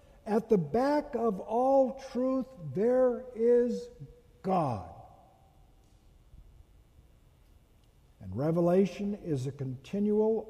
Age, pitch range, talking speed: 60-79, 155-225 Hz, 80 wpm